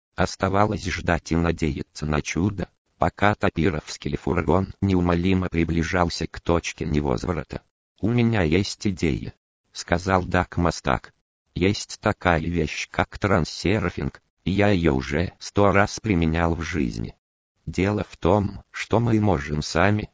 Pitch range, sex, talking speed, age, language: 80-100 Hz, male, 130 wpm, 50-69, Russian